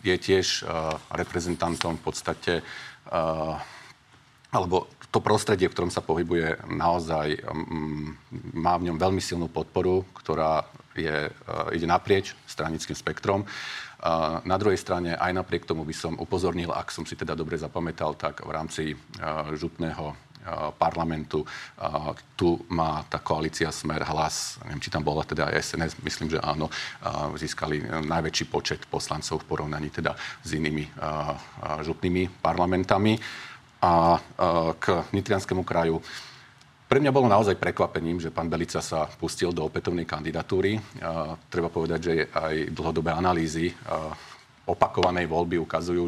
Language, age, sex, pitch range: Slovak, 40-59, male, 75-85 Hz